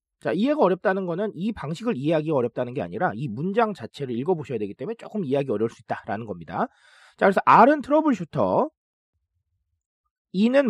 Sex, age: male, 40-59